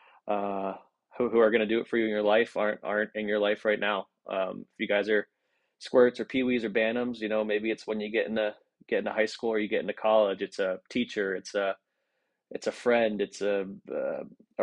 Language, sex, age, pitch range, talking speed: English, male, 20-39, 100-110 Hz, 240 wpm